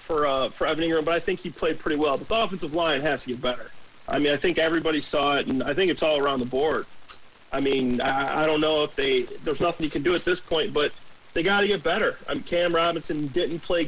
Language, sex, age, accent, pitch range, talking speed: English, male, 40-59, American, 155-205 Hz, 270 wpm